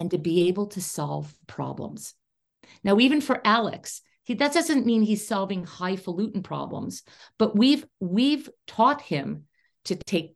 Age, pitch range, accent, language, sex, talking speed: 50-69, 170-220 Hz, American, English, female, 145 wpm